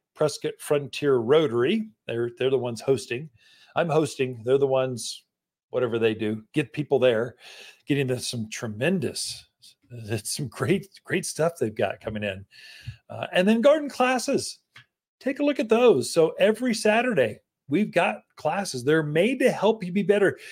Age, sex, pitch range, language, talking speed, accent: 40-59, male, 130-190 Hz, English, 160 wpm, American